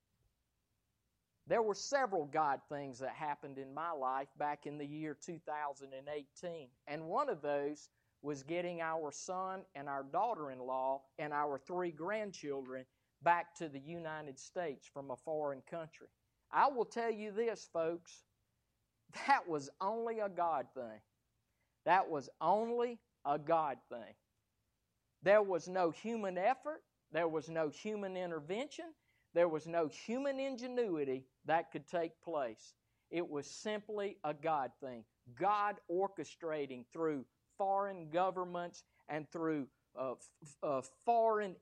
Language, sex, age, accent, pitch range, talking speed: English, male, 50-69, American, 135-195 Hz, 135 wpm